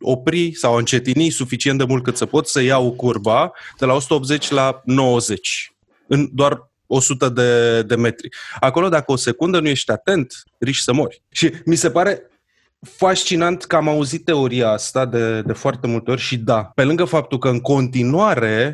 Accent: native